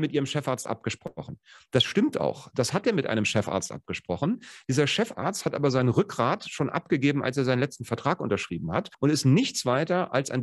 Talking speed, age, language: 200 wpm, 40-59, German